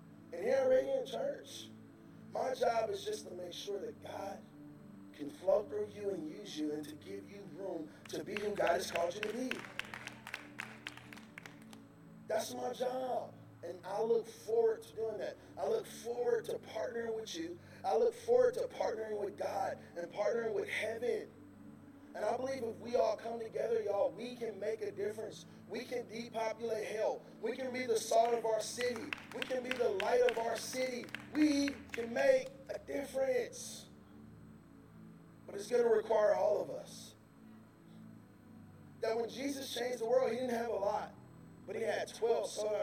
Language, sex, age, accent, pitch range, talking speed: English, male, 30-49, American, 205-320 Hz, 175 wpm